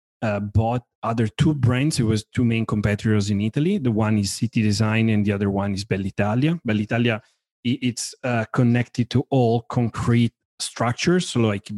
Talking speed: 180 wpm